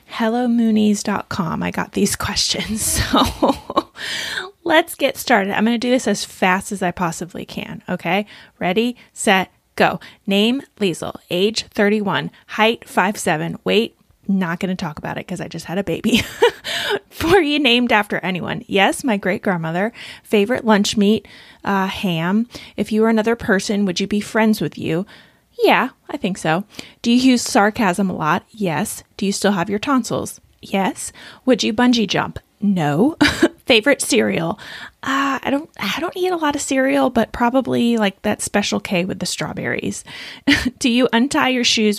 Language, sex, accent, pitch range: English, female, American, 195-245 Hz